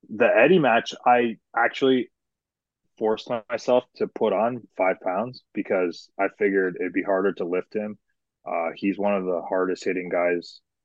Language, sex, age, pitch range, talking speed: English, male, 20-39, 95-120 Hz, 160 wpm